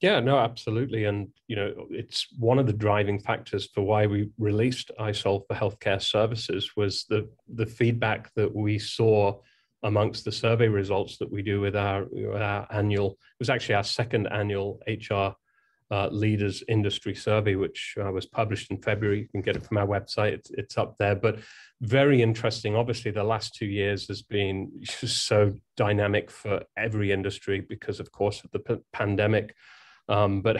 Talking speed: 180 wpm